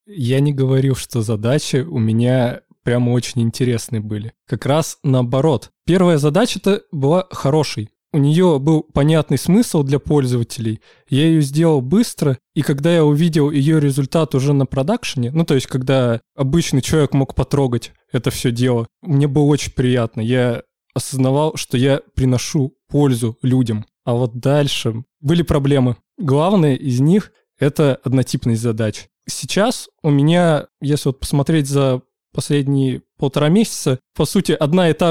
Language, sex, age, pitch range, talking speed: Russian, male, 20-39, 125-150 Hz, 150 wpm